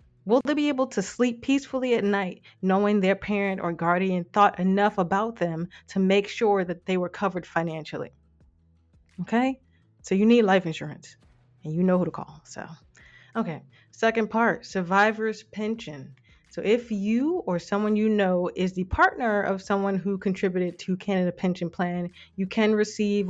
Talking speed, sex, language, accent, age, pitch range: 165 wpm, female, English, American, 20-39, 165-205 Hz